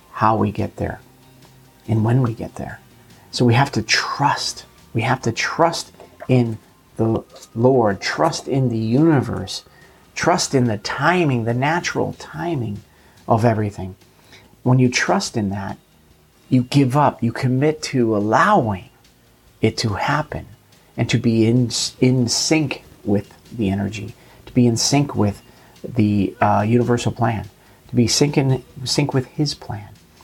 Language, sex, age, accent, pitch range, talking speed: English, male, 40-59, American, 105-135 Hz, 150 wpm